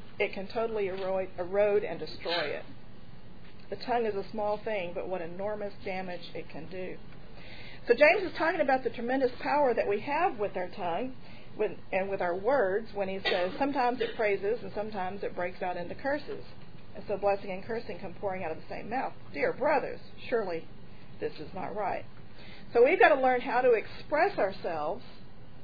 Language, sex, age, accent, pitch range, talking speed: English, female, 40-59, American, 190-270 Hz, 185 wpm